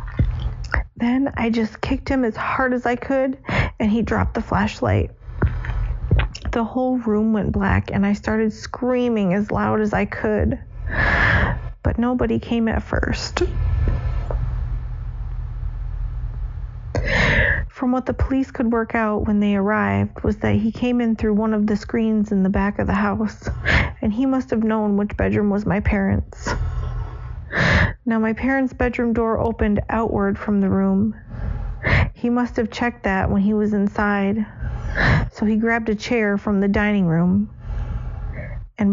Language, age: English, 40-59